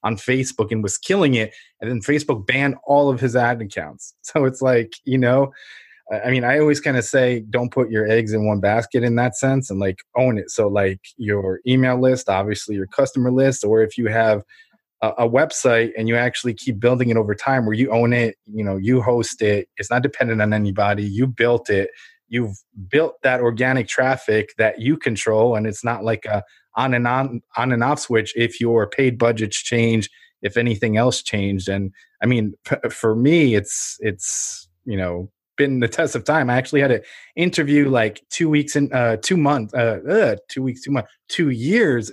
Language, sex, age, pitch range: English, male, 20-39, 110-135 Hz